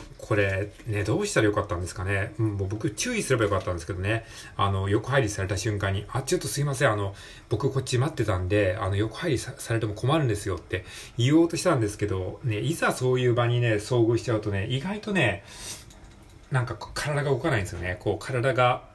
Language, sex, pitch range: Japanese, male, 100-130 Hz